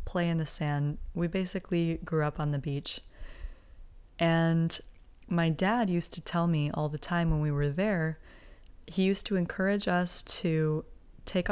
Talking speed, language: 165 wpm, English